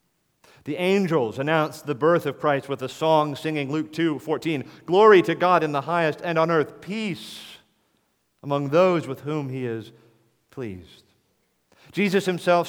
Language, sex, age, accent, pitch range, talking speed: English, male, 40-59, American, 125-170 Hz, 155 wpm